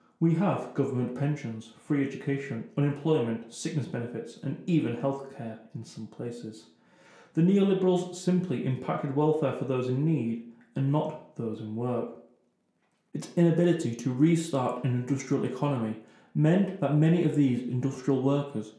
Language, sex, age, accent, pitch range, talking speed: English, male, 30-49, British, 120-160 Hz, 140 wpm